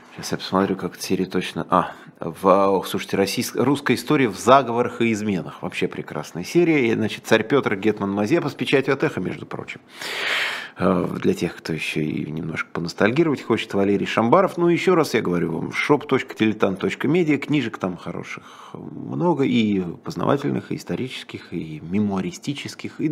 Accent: native